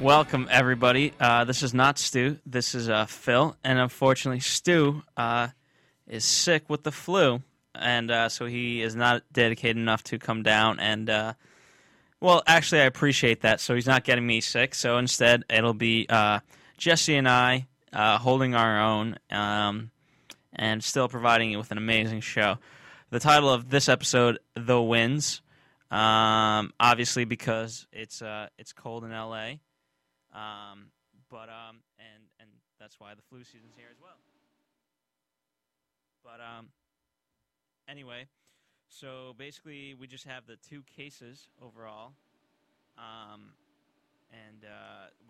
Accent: American